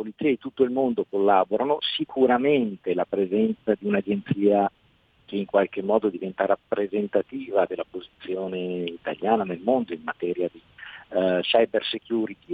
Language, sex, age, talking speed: Italian, male, 50-69, 125 wpm